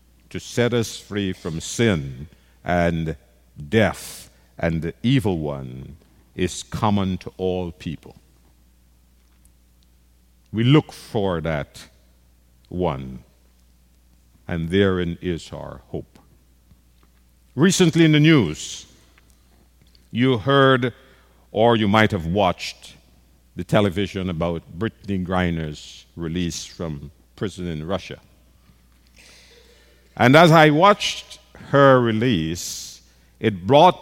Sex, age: male, 60-79